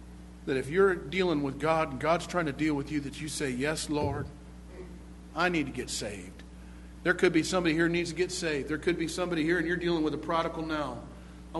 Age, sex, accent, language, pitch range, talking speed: 50-69, male, American, English, 145-180 Hz, 240 wpm